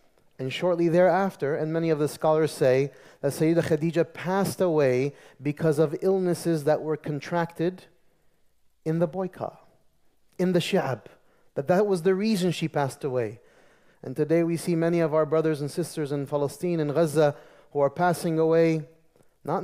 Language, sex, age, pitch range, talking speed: English, male, 30-49, 155-205 Hz, 160 wpm